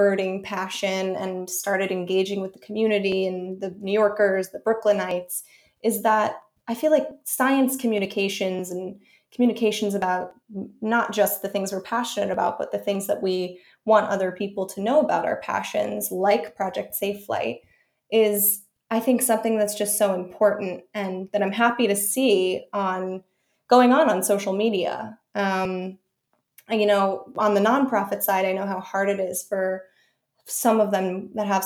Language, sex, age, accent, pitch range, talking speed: English, female, 20-39, American, 190-210 Hz, 165 wpm